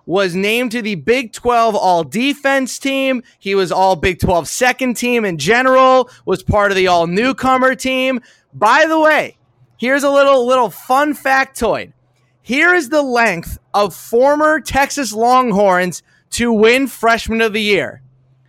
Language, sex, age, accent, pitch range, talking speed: English, male, 30-49, American, 185-250 Hz, 145 wpm